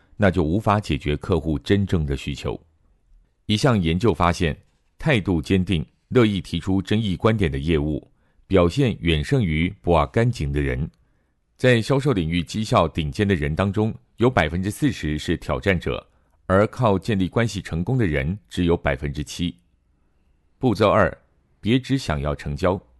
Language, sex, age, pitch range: Chinese, male, 50-69, 75-105 Hz